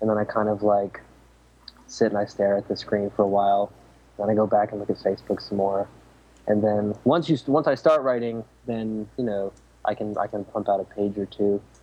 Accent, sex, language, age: American, male, English, 20-39